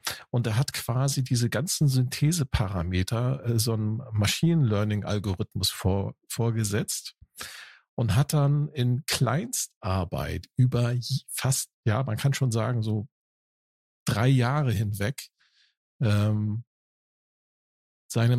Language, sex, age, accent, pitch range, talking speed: German, male, 50-69, German, 105-135 Hz, 105 wpm